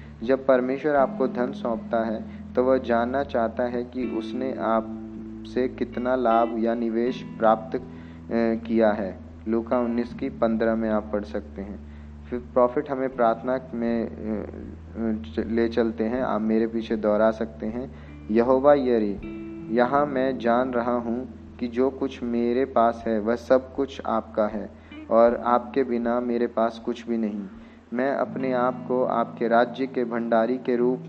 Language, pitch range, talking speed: Hindi, 110-125 Hz, 155 wpm